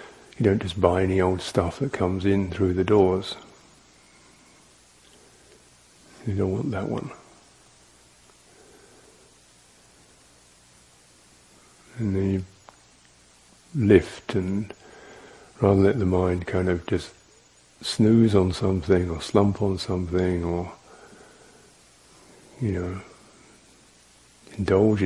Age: 50-69